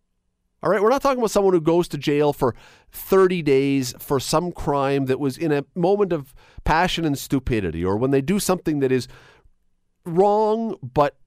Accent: American